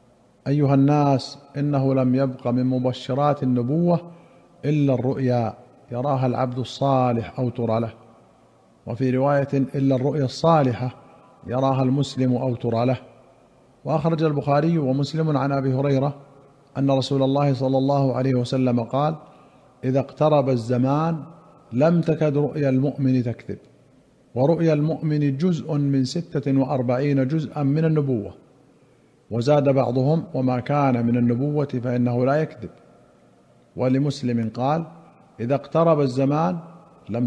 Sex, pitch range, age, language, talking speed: male, 125-150 Hz, 50-69, Arabic, 115 wpm